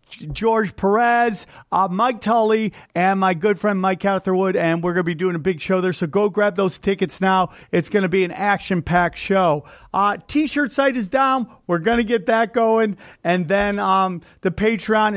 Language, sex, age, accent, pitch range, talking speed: English, male, 40-59, American, 175-220 Hz, 200 wpm